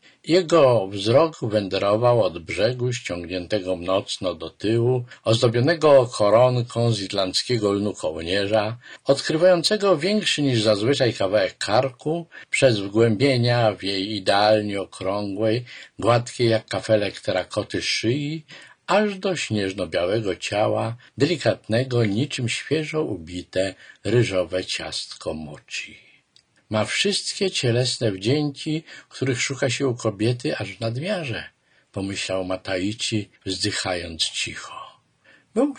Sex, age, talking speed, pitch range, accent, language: male, 50-69, 100 wpm, 100-140 Hz, native, Polish